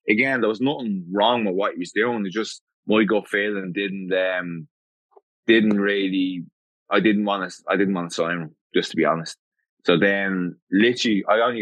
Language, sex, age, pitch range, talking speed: English, male, 20-39, 90-105 Hz, 205 wpm